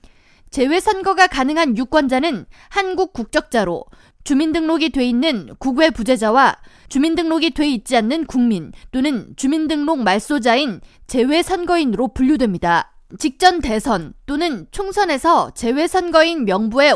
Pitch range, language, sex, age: 240-335 Hz, Korean, female, 20-39